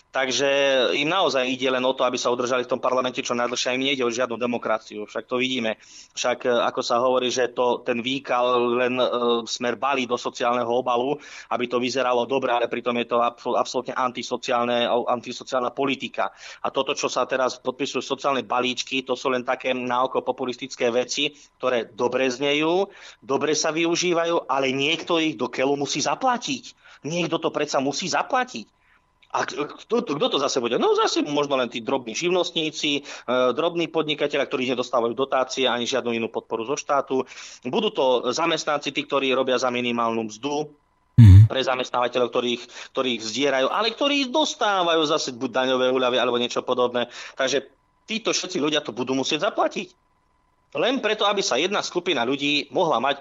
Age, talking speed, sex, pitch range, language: 20-39, 165 wpm, male, 125-145 Hz, Slovak